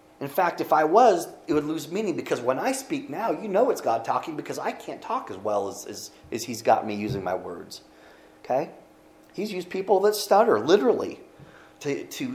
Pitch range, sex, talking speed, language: 110-145 Hz, male, 210 wpm, English